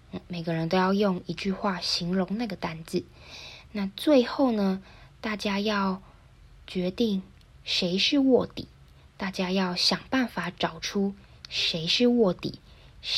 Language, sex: Chinese, female